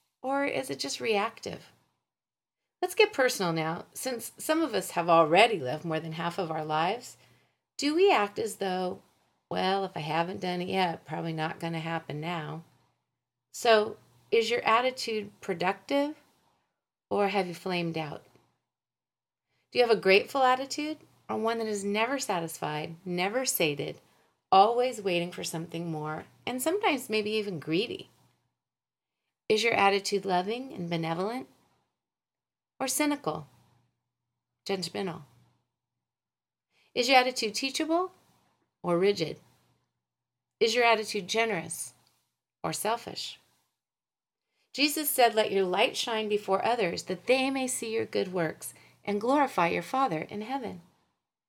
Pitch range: 165-245 Hz